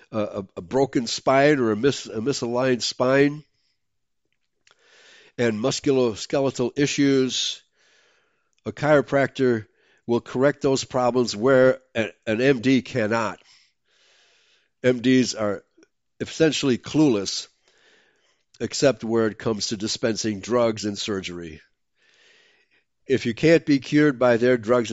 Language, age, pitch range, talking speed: English, 60-79, 105-135 Hz, 105 wpm